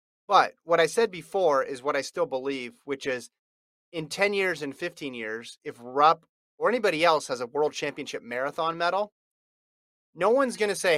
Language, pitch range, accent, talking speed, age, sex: English, 125-170 Hz, American, 180 wpm, 30-49, male